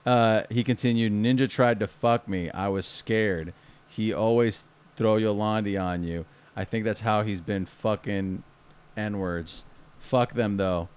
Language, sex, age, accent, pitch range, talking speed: English, male, 30-49, American, 100-140 Hz, 155 wpm